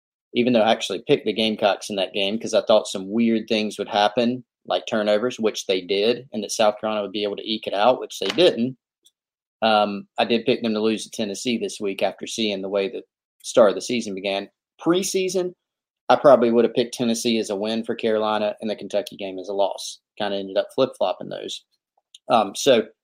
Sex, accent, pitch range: male, American, 105-120 Hz